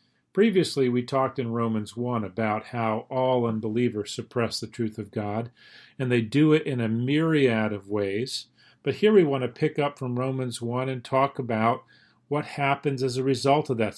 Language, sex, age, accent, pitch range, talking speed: English, male, 40-59, American, 115-140 Hz, 190 wpm